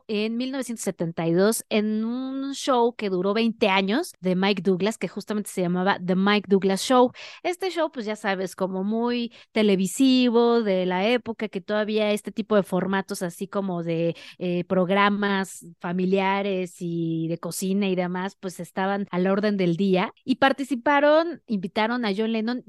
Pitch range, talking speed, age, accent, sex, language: 185-230 Hz, 160 wpm, 30-49, Mexican, female, Spanish